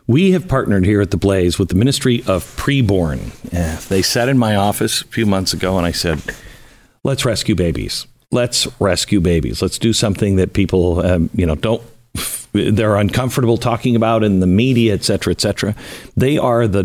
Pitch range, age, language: 90-120 Hz, 50-69, English